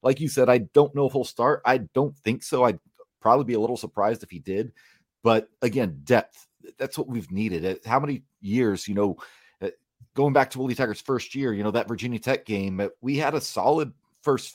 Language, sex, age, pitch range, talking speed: English, male, 30-49, 100-125 Hz, 215 wpm